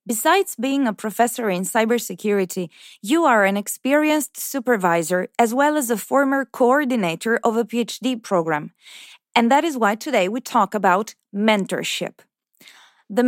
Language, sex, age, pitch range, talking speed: English, female, 20-39, 195-255 Hz, 140 wpm